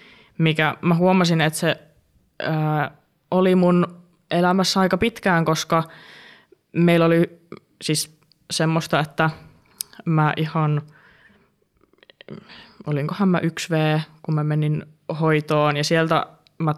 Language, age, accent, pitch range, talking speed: Finnish, 20-39, native, 150-180 Hz, 105 wpm